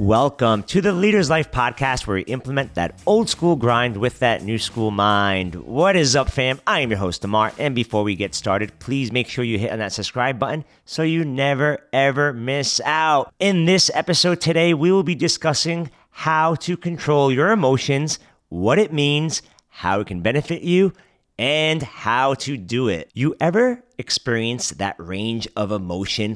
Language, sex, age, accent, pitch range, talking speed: English, male, 30-49, American, 110-145 Hz, 180 wpm